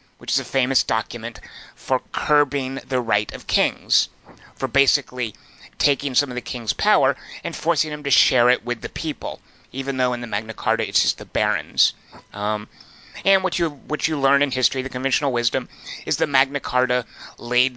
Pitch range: 115-150 Hz